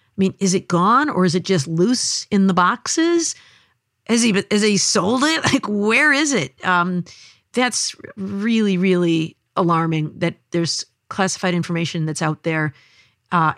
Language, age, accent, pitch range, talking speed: English, 50-69, American, 165-205 Hz, 155 wpm